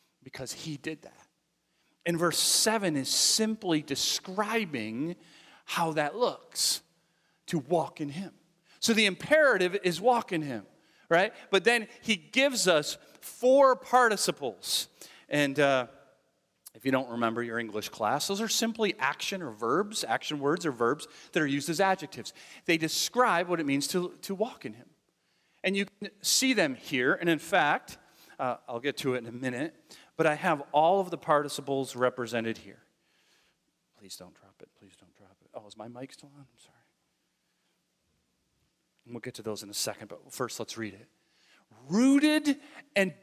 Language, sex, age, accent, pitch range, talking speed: English, male, 40-59, American, 135-210 Hz, 170 wpm